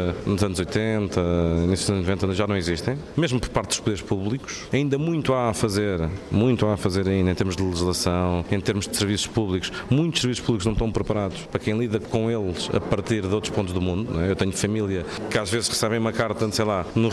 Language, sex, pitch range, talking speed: Portuguese, male, 95-120 Hz, 225 wpm